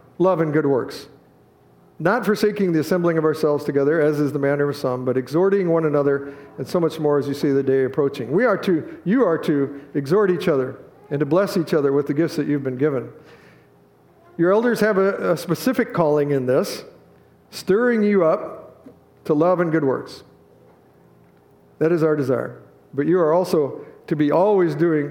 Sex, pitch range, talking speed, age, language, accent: male, 145-195 Hz, 195 wpm, 50-69, English, American